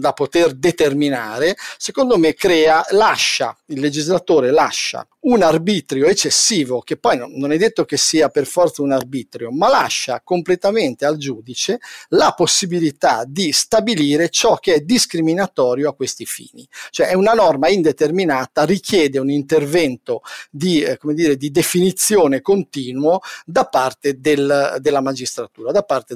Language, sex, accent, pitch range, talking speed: Italian, male, native, 140-175 Hz, 145 wpm